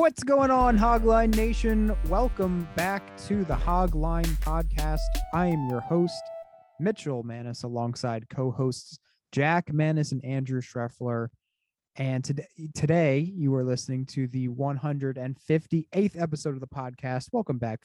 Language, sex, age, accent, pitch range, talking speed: English, male, 30-49, American, 130-165 Hz, 130 wpm